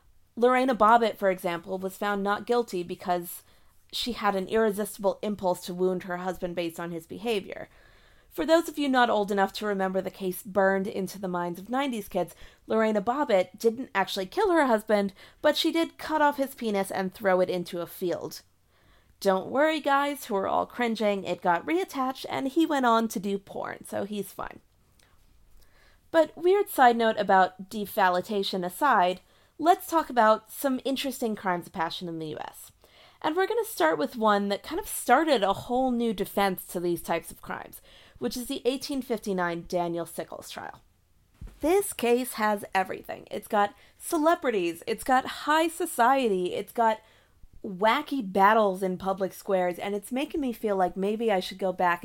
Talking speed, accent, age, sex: 180 wpm, American, 40-59, female